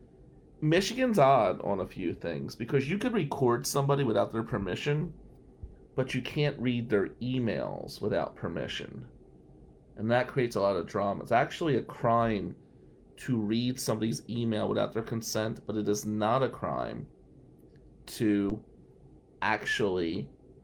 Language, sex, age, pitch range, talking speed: English, male, 30-49, 105-130 Hz, 140 wpm